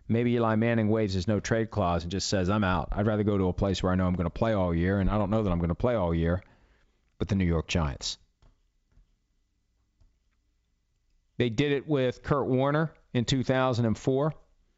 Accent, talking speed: American, 205 wpm